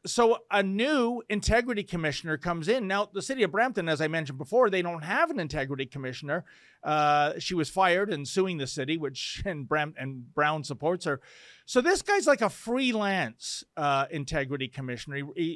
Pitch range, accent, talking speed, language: 155-235 Hz, American, 180 wpm, English